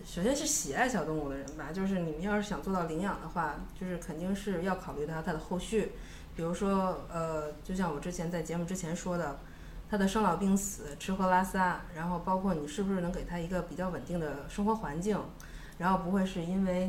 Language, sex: Chinese, female